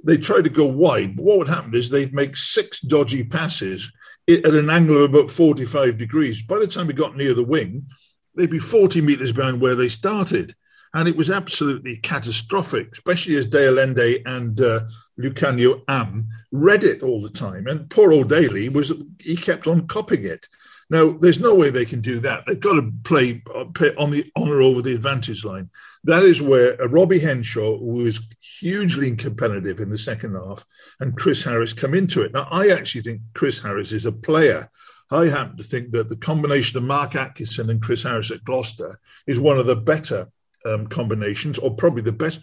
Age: 50-69